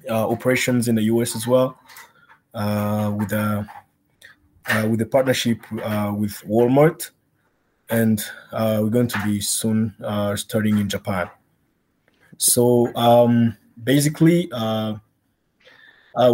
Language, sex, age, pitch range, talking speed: English, male, 20-39, 110-125 Hz, 120 wpm